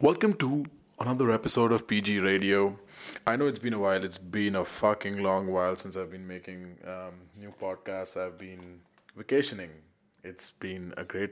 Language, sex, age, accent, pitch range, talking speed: English, male, 20-39, Indian, 100-125 Hz, 175 wpm